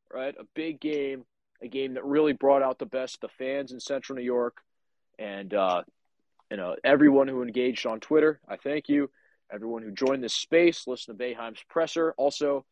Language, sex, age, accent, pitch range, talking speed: English, male, 30-49, American, 115-150 Hz, 190 wpm